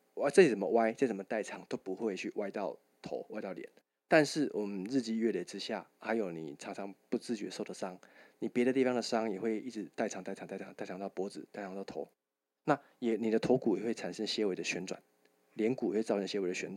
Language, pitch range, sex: Chinese, 95-125 Hz, male